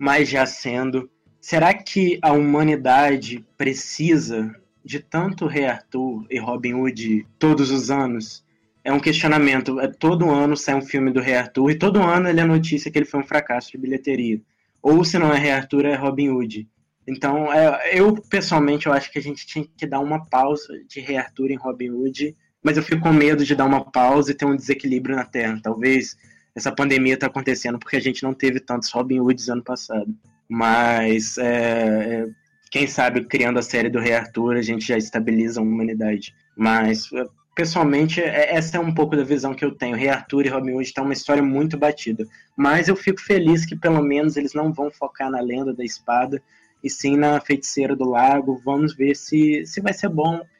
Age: 20-39